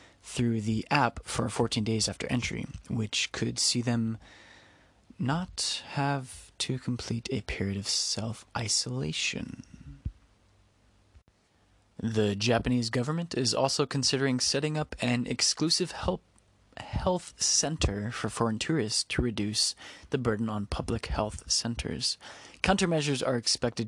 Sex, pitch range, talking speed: male, 110-145 Hz, 120 wpm